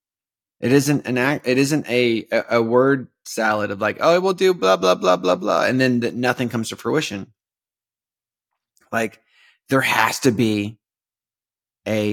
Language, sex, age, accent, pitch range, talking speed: English, male, 30-49, American, 110-140 Hz, 165 wpm